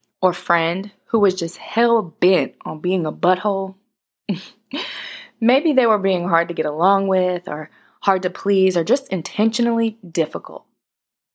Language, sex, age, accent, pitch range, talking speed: English, female, 20-39, American, 170-235 Hz, 150 wpm